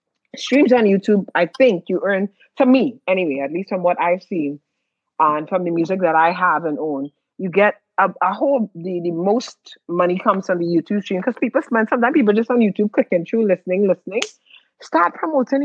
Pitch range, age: 180-245 Hz, 30-49